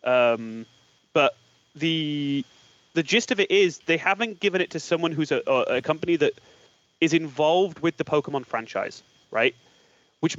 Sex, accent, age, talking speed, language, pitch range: male, British, 30-49, 155 wpm, English, 150-190 Hz